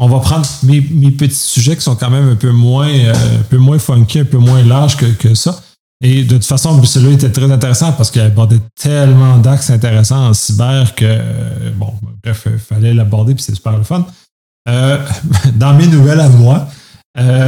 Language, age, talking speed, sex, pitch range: French, 30-49, 205 wpm, male, 115-140 Hz